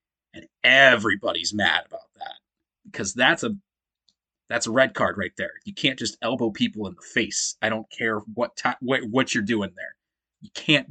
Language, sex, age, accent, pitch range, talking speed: English, male, 30-49, American, 105-135 Hz, 185 wpm